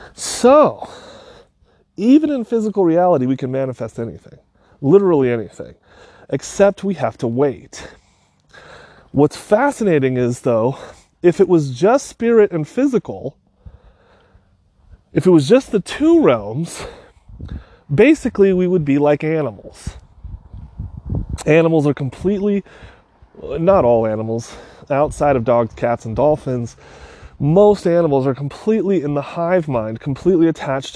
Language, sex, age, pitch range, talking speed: English, male, 30-49, 120-180 Hz, 120 wpm